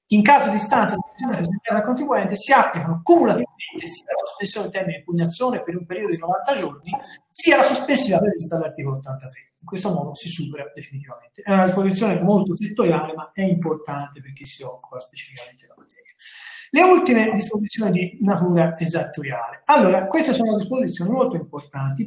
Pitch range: 150-215 Hz